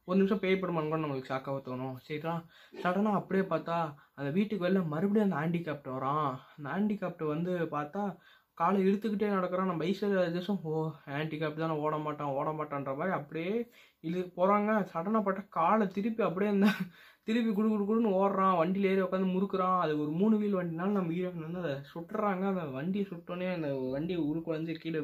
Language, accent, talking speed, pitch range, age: Tamil, native, 155 wpm, 145-190 Hz, 20-39